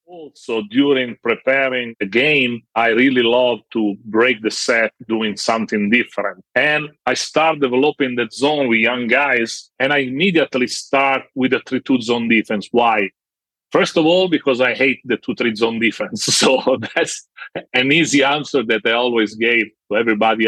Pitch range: 115-140 Hz